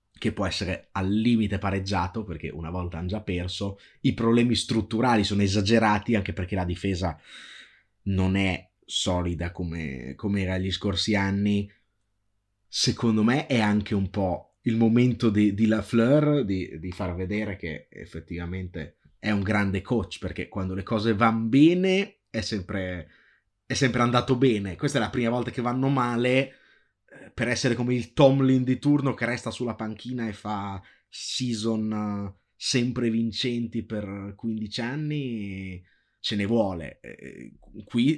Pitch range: 95-120 Hz